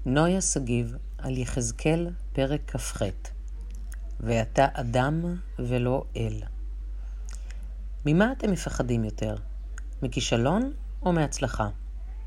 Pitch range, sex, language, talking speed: 110-150 Hz, female, Hebrew, 85 wpm